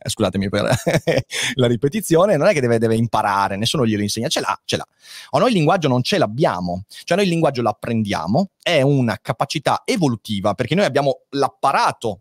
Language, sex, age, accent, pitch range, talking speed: Italian, male, 30-49, native, 110-140 Hz, 180 wpm